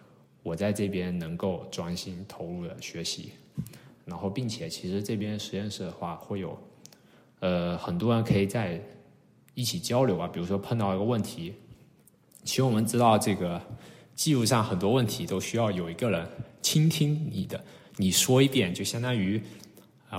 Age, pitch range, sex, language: 20-39, 95-120 Hz, male, Chinese